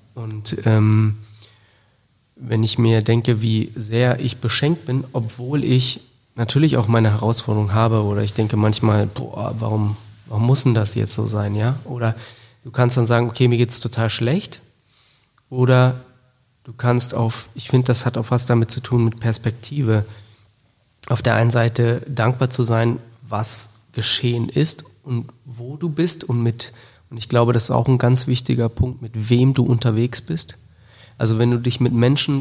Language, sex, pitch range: German, male, 115-125 Hz